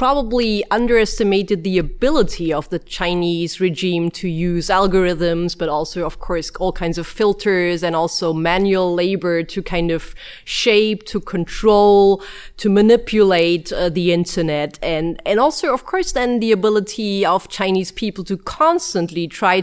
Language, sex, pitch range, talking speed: English, female, 180-235 Hz, 145 wpm